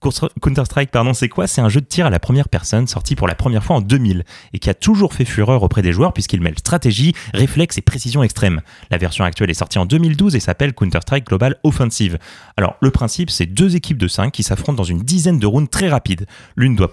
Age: 30-49